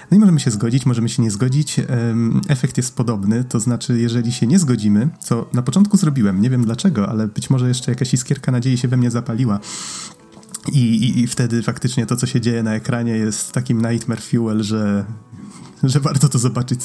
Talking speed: 200 wpm